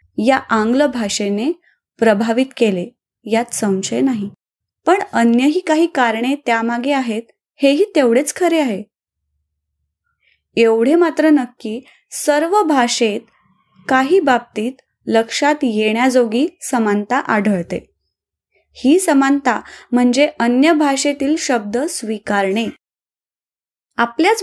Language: Marathi